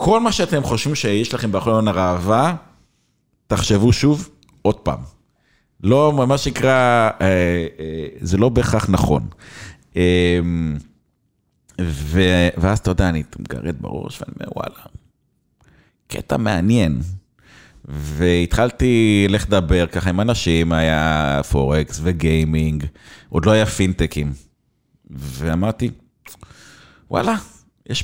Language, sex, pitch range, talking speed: Hebrew, male, 80-110 Hz, 100 wpm